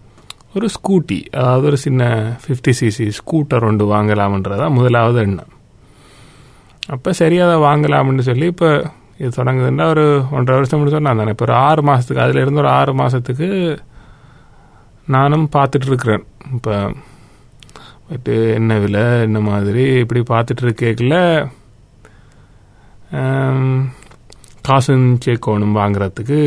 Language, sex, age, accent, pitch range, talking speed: Tamil, male, 30-49, native, 105-140 Hz, 105 wpm